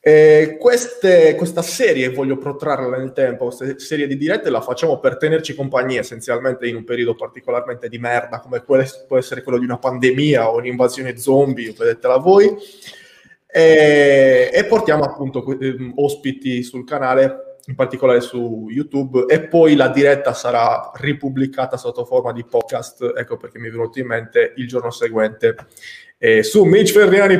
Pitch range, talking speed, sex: 125-170 Hz, 160 wpm, male